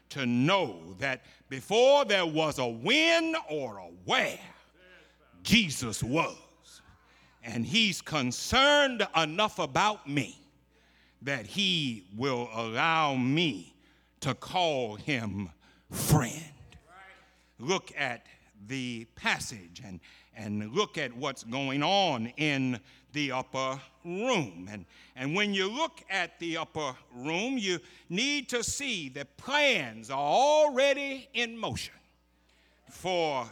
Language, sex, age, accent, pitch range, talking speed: English, male, 60-79, American, 125-195 Hz, 115 wpm